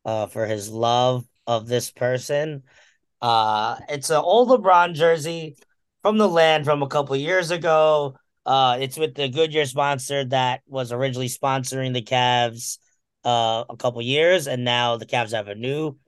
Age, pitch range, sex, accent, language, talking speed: 20-39, 125-150 Hz, male, American, English, 165 wpm